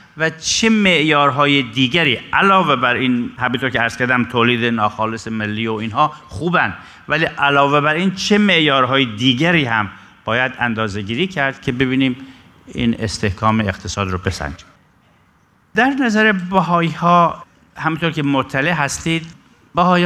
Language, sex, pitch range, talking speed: Persian, male, 115-160 Hz, 130 wpm